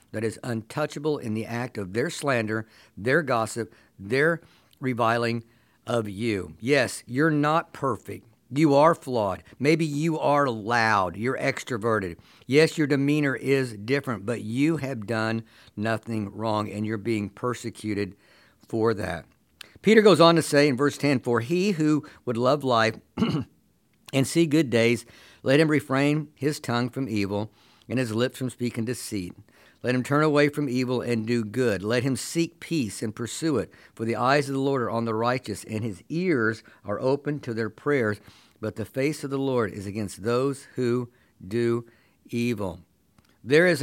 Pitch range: 110-140 Hz